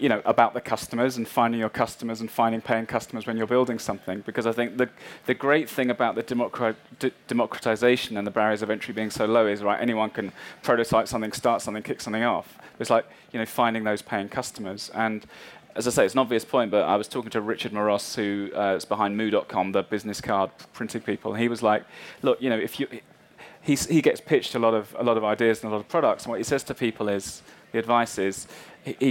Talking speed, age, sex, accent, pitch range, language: 235 wpm, 30-49, male, British, 110-125 Hz, English